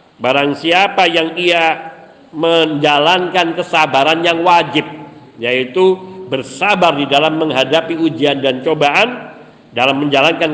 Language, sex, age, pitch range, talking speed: Indonesian, male, 50-69, 145-195 Hz, 100 wpm